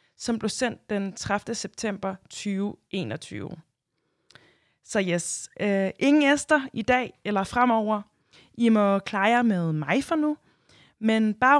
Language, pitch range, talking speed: Danish, 190-250 Hz, 130 wpm